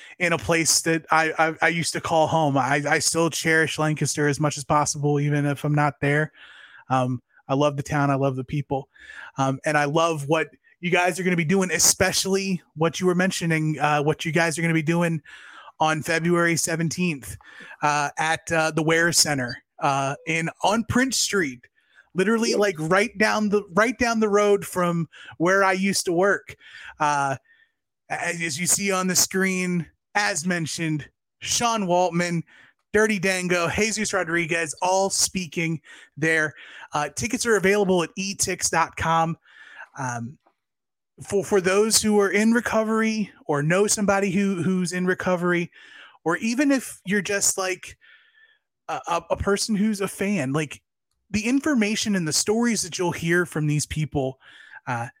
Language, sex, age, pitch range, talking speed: English, male, 20-39, 155-200 Hz, 165 wpm